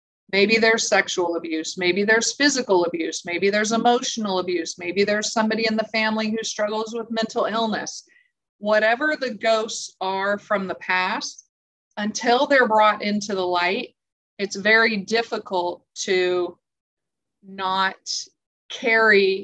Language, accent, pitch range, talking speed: English, American, 190-230 Hz, 130 wpm